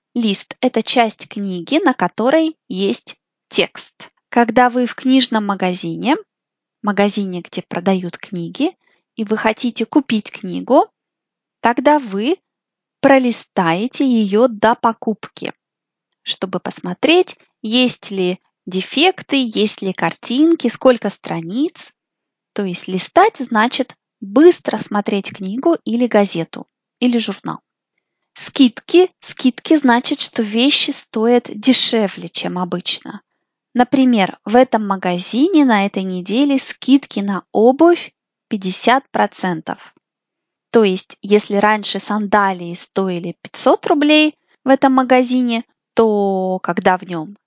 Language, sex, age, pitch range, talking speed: Russian, female, 20-39, 195-265 Hz, 105 wpm